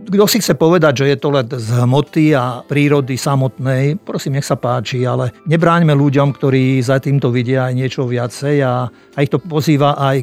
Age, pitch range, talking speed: 50-69, 130-150 Hz, 195 wpm